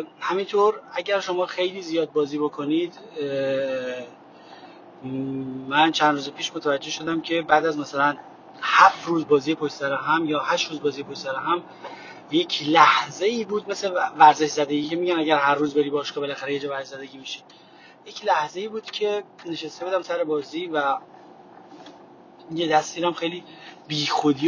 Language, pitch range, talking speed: Persian, 145-170 Hz, 150 wpm